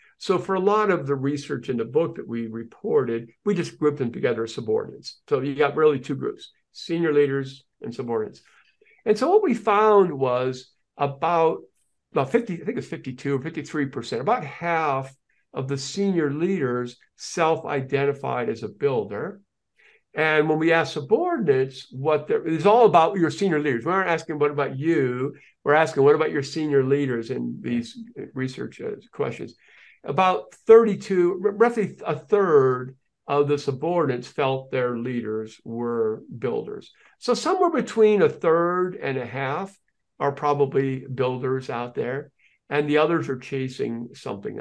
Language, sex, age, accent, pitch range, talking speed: English, male, 50-69, American, 135-185 Hz, 155 wpm